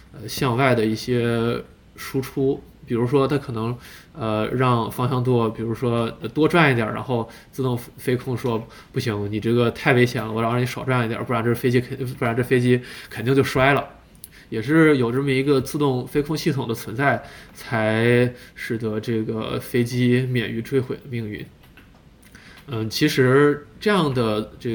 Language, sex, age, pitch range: Chinese, male, 20-39, 110-135 Hz